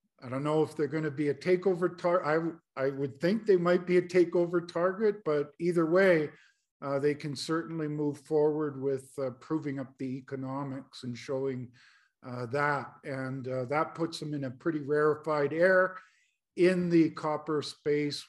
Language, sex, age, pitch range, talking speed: English, male, 50-69, 140-165 Hz, 175 wpm